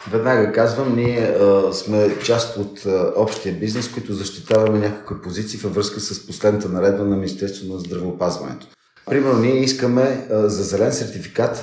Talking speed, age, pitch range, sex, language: 155 wpm, 40-59, 100-120 Hz, male, Bulgarian